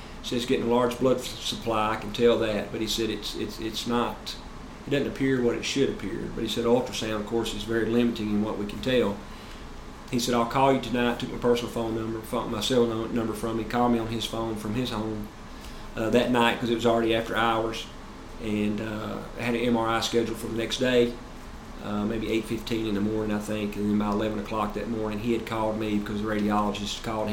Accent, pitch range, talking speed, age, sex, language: American, 110-120 Hz, 235 wpm, 40-59, male, English